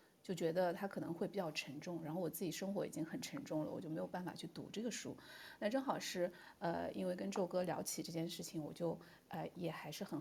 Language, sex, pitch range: Chinese, female, 170-215 Hz